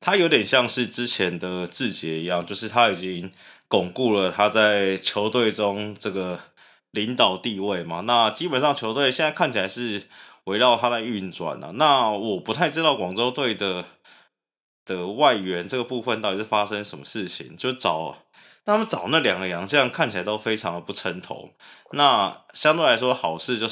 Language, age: Chinese, 20-39